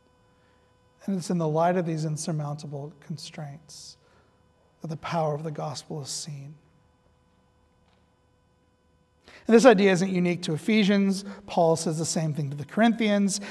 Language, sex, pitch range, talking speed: English, male, 155-185 Hz, 140 wpm